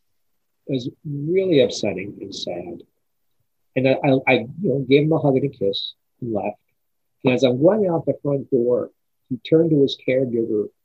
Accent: American